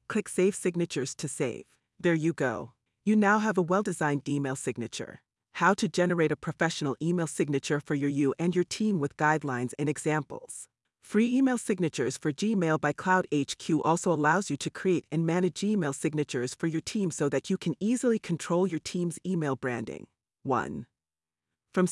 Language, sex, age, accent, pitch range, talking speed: English, female, 40-59, American, 135-185 Hz, 170 wpm